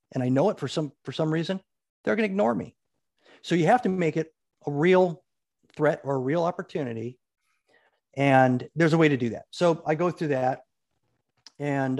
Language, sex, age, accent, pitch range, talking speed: English, male, 40-59, American, 125-165 Hz, 195 wpm